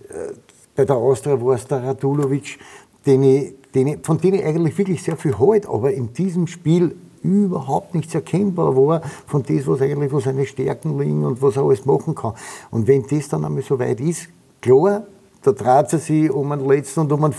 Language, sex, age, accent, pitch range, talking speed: German, male, 60-79, Austrian, 135-165 Hz, 205 wpm